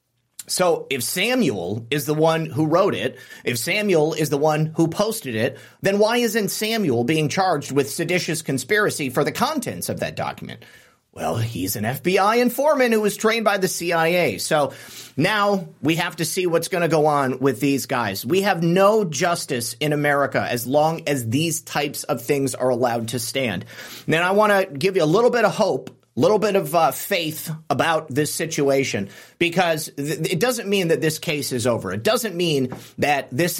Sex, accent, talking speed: male, American, 195 wpm